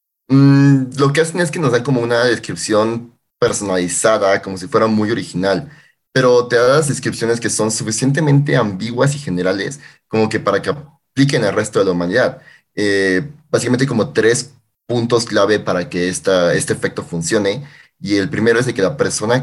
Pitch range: 95-135 Hz